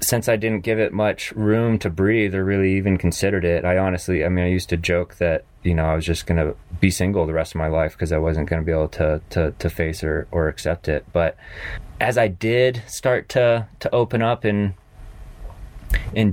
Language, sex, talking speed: English, male, 230 wpm